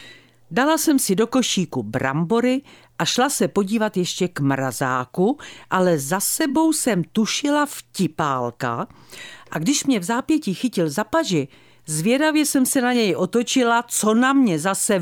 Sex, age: female, 50-69